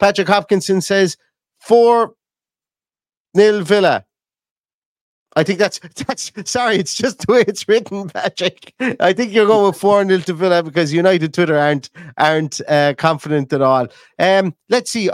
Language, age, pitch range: English, 30-49, 115-150 Hz